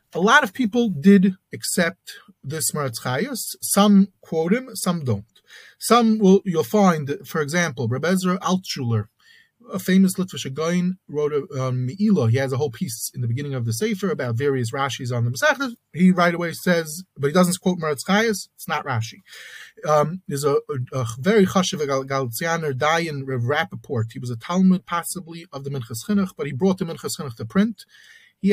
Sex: male